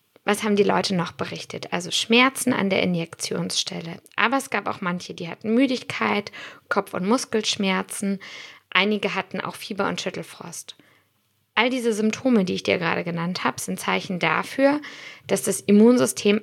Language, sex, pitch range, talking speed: German, female, 190-230 Hz, 155 wpm